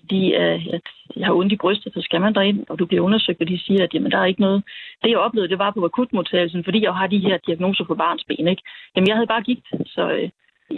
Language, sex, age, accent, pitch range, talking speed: Danish, female, 40-59, native, 175-215 Hz, 265 wpm